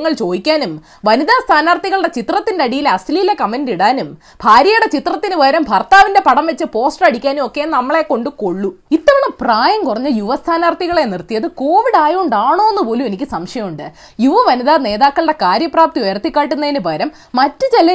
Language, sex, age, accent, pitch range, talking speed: Malayalam, female, 20-39, native, 230-345 Hz, 115 wpm